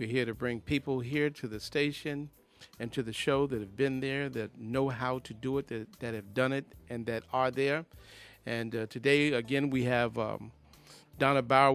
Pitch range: 115-140 Hz